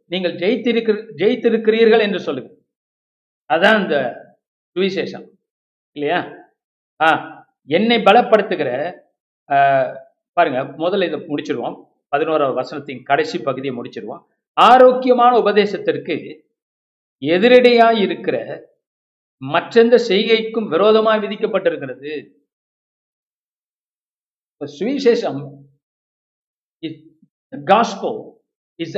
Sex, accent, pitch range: male, native, 160-230 Hz